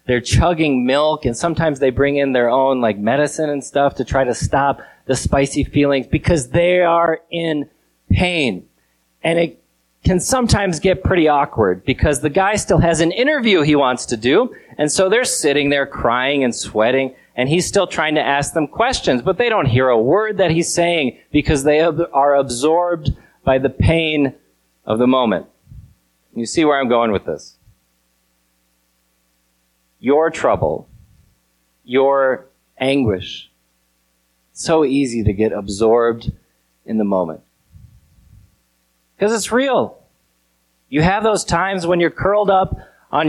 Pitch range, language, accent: 110-175 Hz, English, American